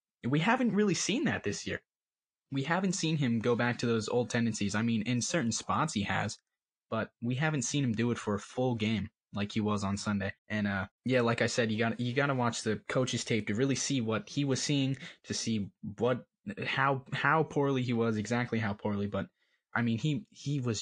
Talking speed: 230 wpm